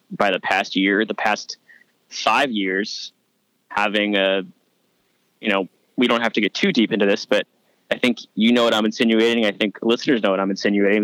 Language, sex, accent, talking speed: English, male, American, 195 wpm